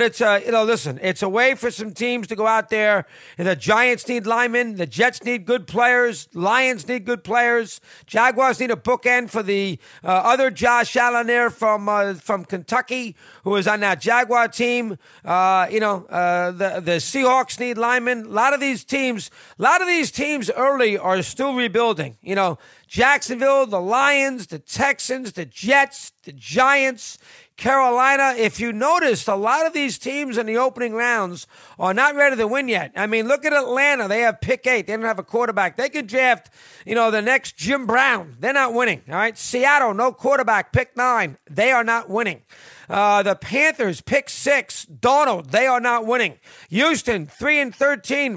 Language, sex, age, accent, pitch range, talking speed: English, male, 40-59, American, 205-260 Hz, 195 wpm